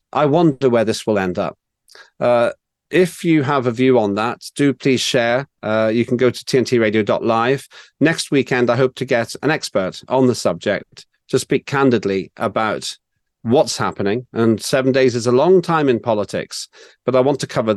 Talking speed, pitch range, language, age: 185 wpm, 105-130 Hz, English, 40-59